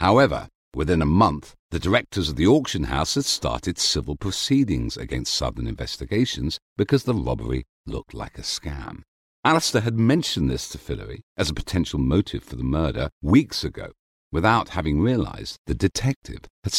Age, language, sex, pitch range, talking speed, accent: 50-69, English, male, 75-125 Hz, 160 wpm, British